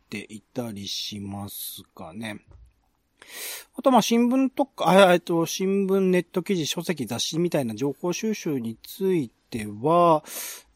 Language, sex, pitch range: Japanese, male, 130-185 Hz